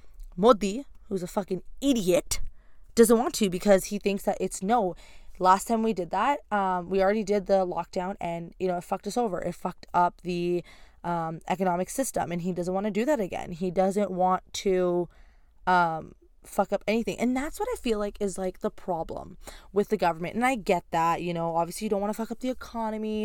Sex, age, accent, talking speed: female, 20-39, American, 215 wpm